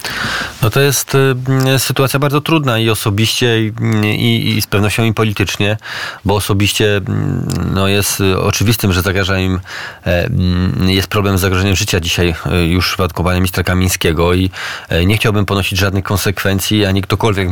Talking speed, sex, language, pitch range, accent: 145 wpm, male, Polish, 100-120 Hz, native